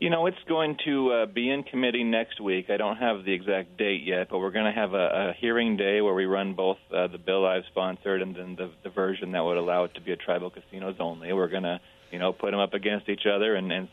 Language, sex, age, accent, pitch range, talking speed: English, male, 30-49, American, 90-105 Hz, 275 wpm